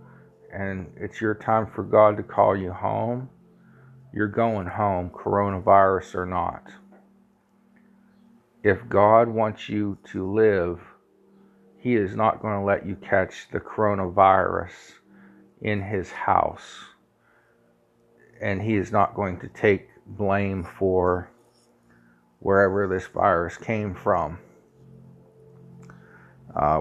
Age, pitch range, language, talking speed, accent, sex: 50-69, 95-110 Hz, English, 110 wpm, American, male